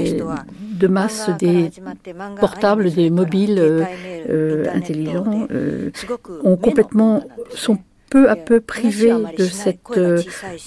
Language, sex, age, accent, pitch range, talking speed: French, female, 60-79, French, 165-210 Hz, 115 wpm